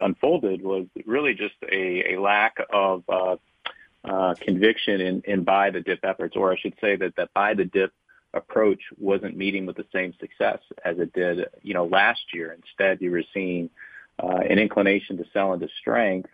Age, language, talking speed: 40-59, English, 185 wpm